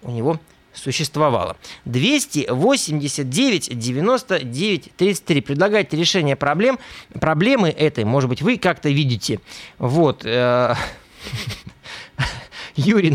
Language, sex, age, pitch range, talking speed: Russian, male, 20-39, 120-165 Hz, 80 wpm